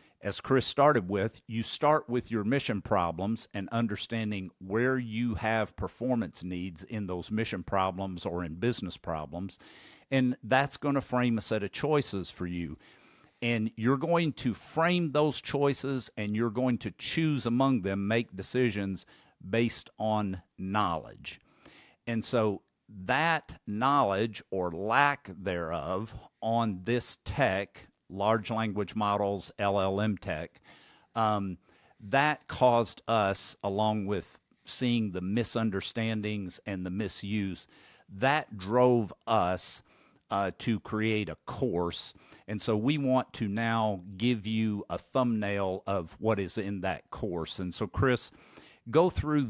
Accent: American